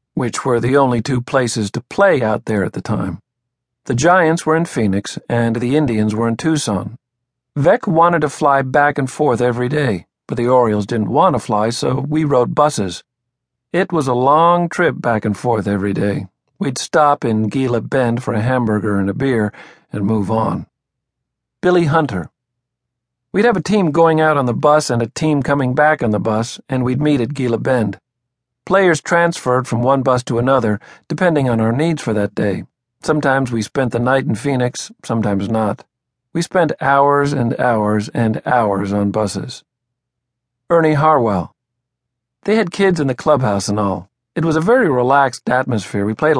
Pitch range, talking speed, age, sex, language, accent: 115-150 Hz, 185 wpm, 50-69, male, English, American